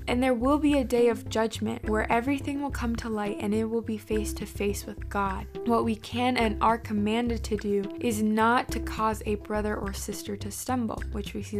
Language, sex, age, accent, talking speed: English, female, 20-39, American, 230 wpm